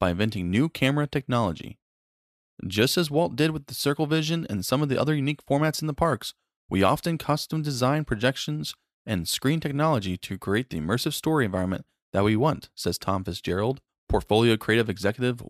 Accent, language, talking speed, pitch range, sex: American, English, 180 wpm, 110-150 Hz, male